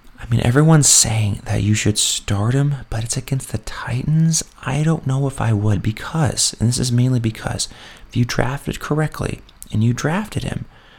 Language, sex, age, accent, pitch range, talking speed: English, male, 30-49, American, 105-135 Hz, 185 wpm